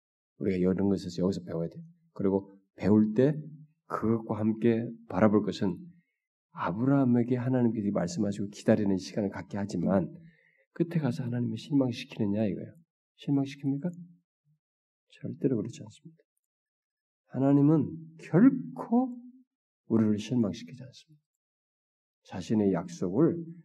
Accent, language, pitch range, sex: native, Korean, 95-155 Hz, male